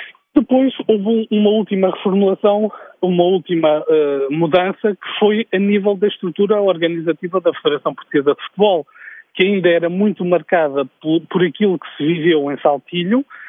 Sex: male